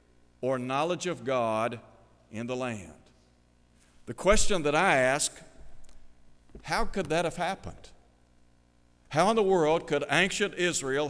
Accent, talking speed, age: American, 130 wpm, 60-79